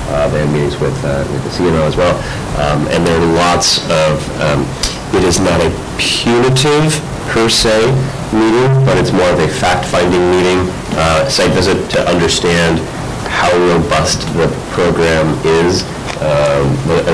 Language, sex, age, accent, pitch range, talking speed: English, male, 30-49, American, 70-90 Hz, 155 wpm